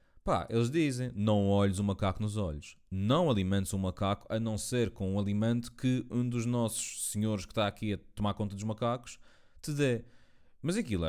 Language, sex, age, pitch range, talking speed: Portuguese, male, 20-39, 90-120 Hz, 205 wpm